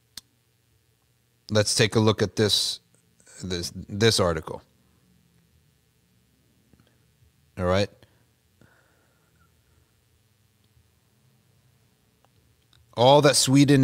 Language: English